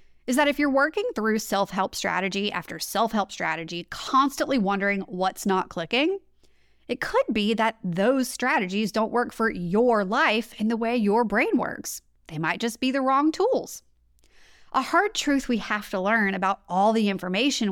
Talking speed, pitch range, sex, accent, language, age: 175 wpm, 195-275 Hz, female, American, English, 30-49